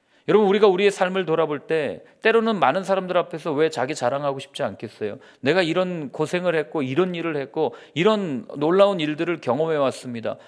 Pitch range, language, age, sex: 145-200 Hz, Korean, 40-59, male